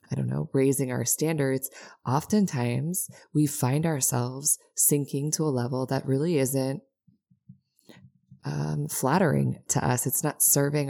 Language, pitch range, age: English, 125-155 Hz, 20-39